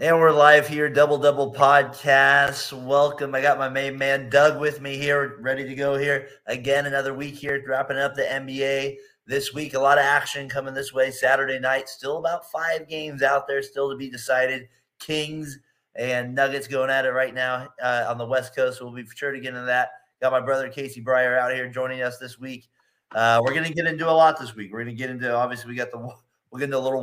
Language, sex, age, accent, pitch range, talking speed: English, male, 30-49, American, 115-135 Hz, 230 wpm